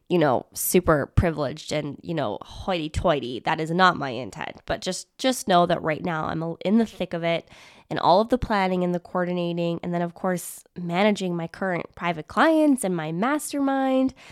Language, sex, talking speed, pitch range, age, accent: English, female, 195 wpm, 170-245 Hz, 10-29, American